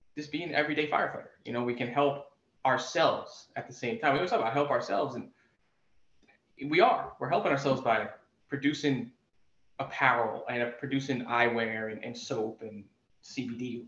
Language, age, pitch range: English, 20-39, 120-145 Hz